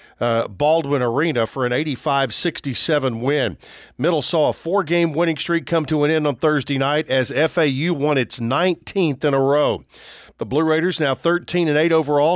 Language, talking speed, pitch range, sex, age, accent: English, 165 wpm, 130-165 Hz, male, 50-69, American